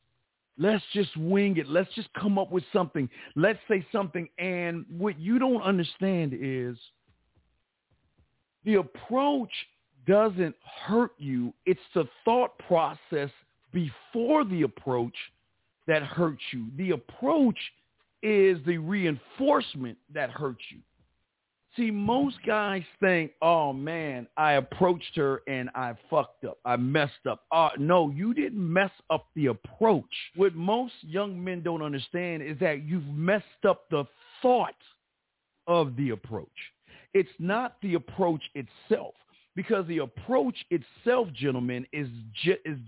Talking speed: 135 wpm